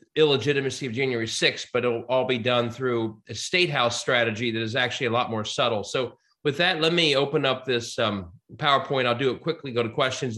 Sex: male